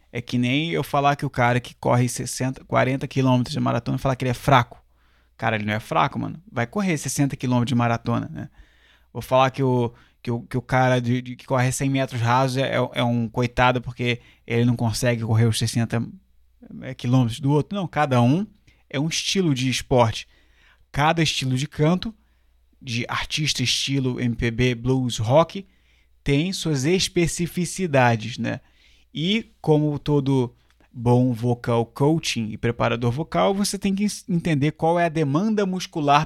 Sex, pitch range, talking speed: male, 120-150 Hz, 170 wpm